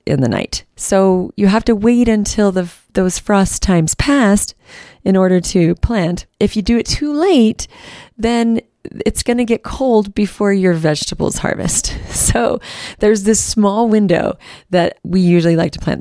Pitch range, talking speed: 165-210 Hz, 170 wpm